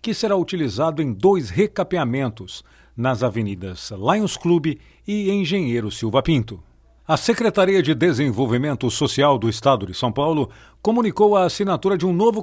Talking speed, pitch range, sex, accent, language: 145 wpm, 120-185 Hz, male, Brazilian, Portuguese